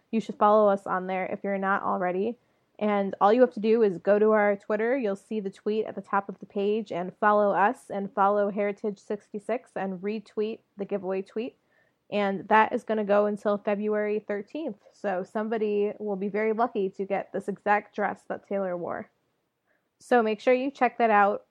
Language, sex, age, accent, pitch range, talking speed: English, female, 20-39, American, 195-220 Hz, 200 wpm